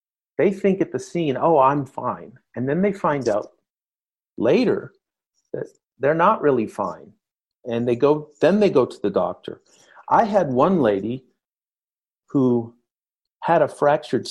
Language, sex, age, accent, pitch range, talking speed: English, male, 50-69, American, 105-145 Hz, 150 wpm